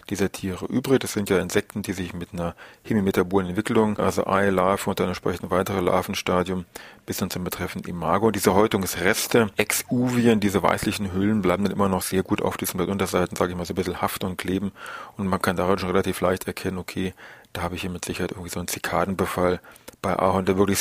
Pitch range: 90-105 Hz